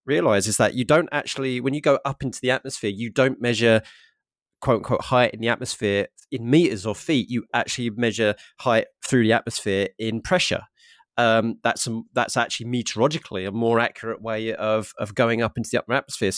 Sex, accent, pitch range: male, British, 110-125 Hz